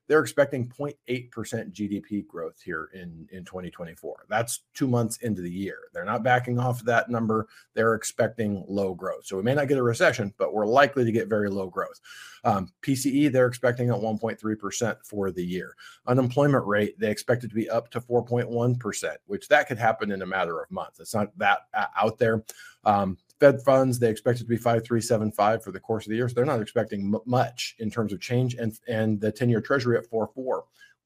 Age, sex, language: 40-59, male, English